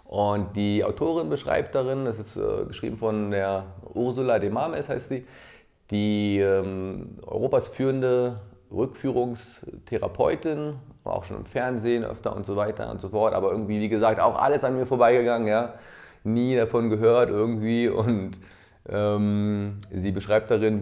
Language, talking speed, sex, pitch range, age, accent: German, 145 wpm, male, 95-120 Hz, 30-49, German